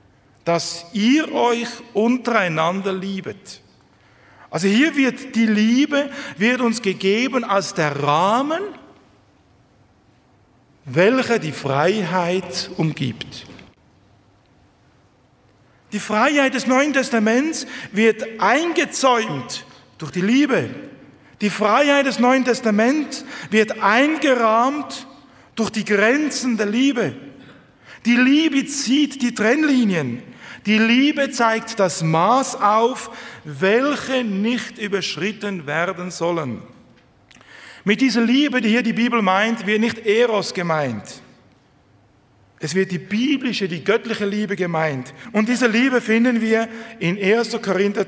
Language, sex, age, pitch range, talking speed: German, male, 50-69, 160-240 Hz, 105 wpm